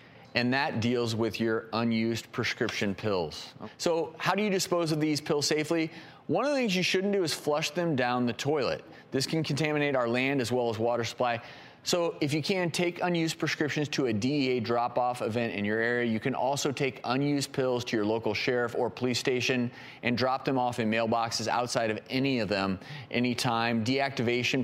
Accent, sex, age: American, male, 30-49